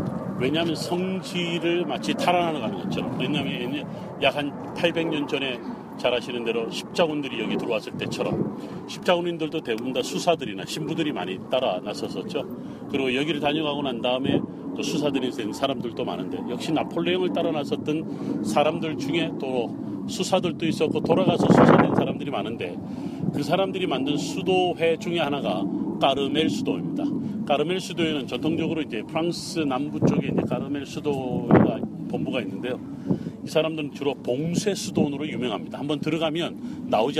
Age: 40-59